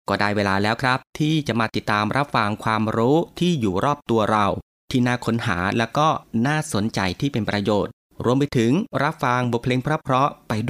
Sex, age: male, 30-49